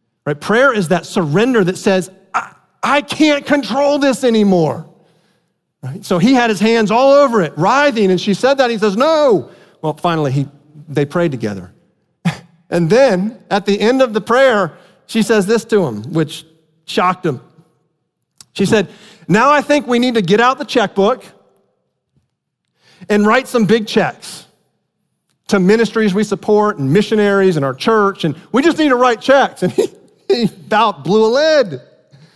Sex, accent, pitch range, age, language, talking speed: male, American, 150-225 Hz, 40-59, English, 170 wpm